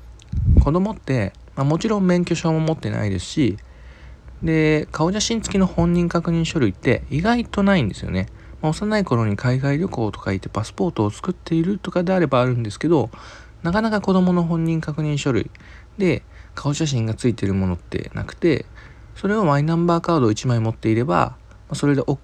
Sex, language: male, Japanese